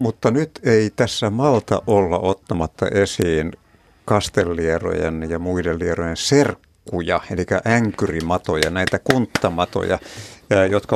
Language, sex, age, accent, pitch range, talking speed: Finnish, male, 60-79, native, 90-115 Hz, 100 wpm